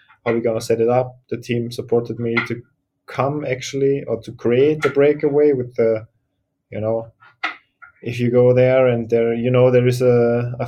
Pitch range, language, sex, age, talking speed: 115-130 Hz, English, male, 20-39, 190 wpm